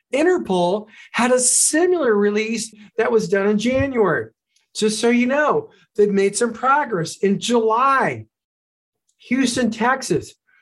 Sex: male